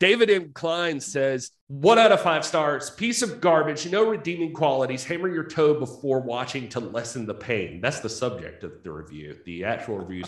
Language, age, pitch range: English, 40-59, 115-165 Hz